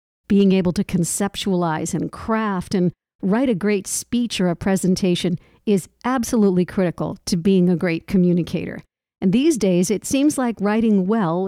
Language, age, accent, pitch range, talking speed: English, 50-69, American, 175-230 Hz, 155 wpm